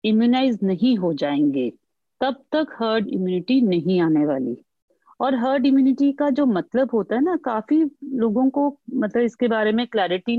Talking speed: 160 wpm